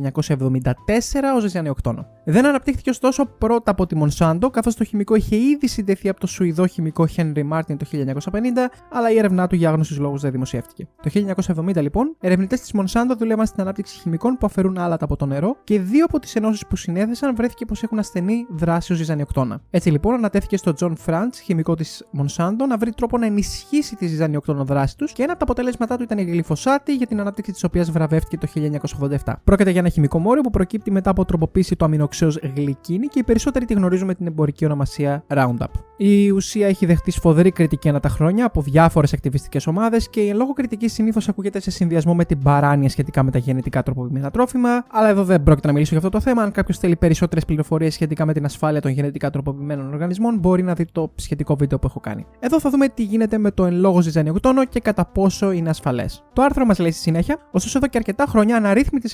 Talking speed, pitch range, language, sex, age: 210 wpm, 155-225 Hz, Greek, male, 20-39